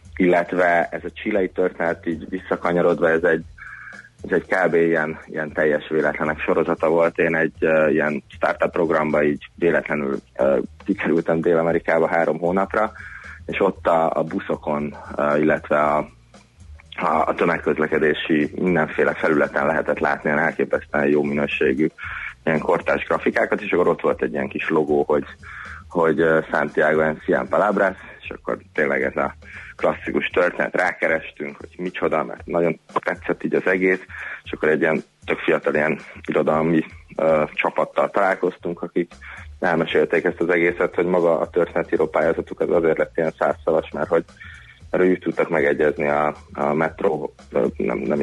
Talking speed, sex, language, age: 150 wpm, male, Hungarian, 30-49